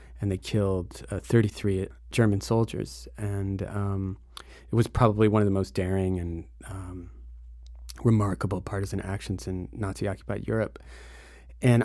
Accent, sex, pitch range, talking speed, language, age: American, male, 95-115 Hz, 130 wpm, English, 30-49